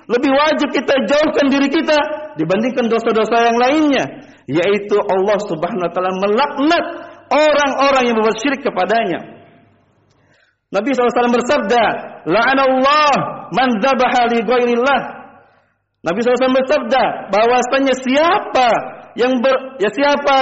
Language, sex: Indonesian, male